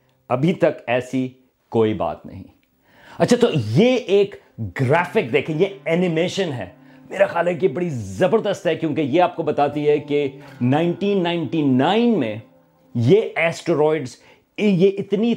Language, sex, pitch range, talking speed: Urdu, male, 130-185 Hz, 135 wpm